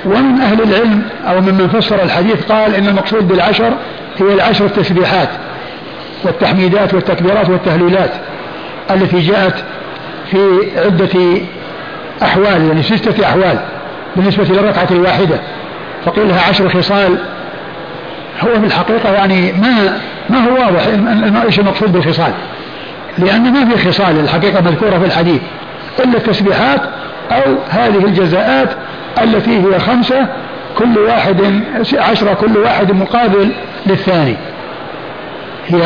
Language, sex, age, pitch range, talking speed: Arabic, male, 50-69, 180-220 Hz, 110 wpm